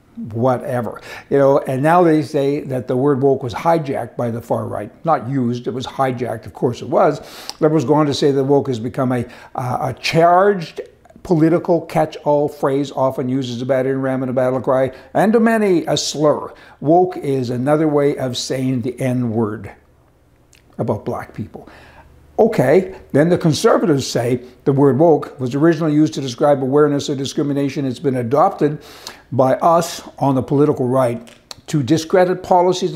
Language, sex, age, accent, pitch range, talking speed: English, male, 60-79, American, 125-155 Hz, 175 wpm